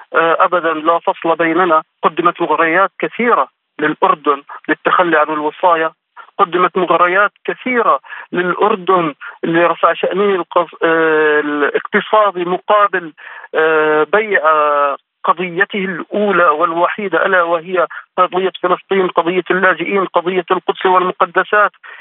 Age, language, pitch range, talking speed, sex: 50-69, Arabic, 165-200 Hz, 85 wpm, male